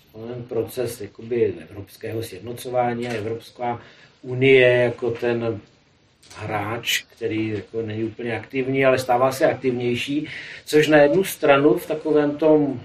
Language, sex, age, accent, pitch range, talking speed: Czech, male, 40-59, native, 120-145 Hz, 120 wpm